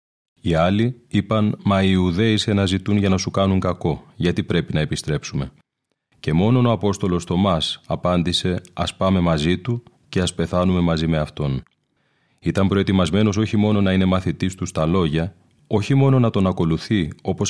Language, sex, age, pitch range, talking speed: Greek, male, 30-49, 85-100 Hz, 170 wpm